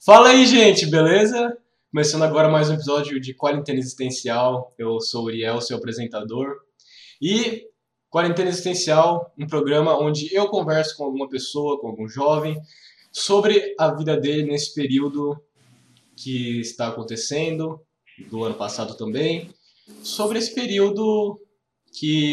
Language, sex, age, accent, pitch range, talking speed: Portuguese, male, 20-39, Brazilian, 125-170 Hz, 130 wpm